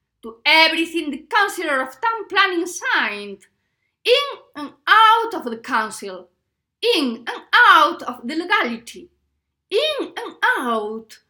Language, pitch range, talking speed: English, 235-390 Hz, 120 wpm